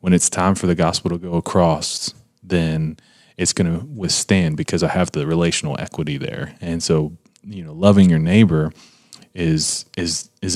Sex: male